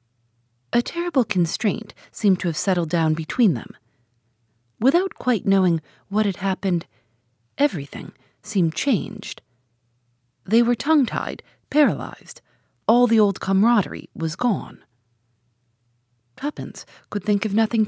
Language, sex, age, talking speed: English, female, 40-59, 115 wpm